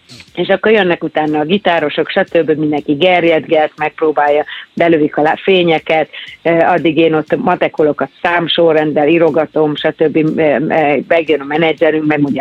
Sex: female